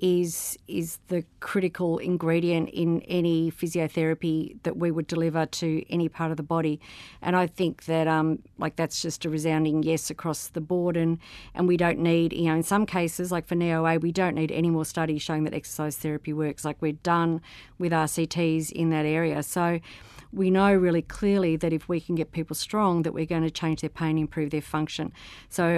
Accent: Australian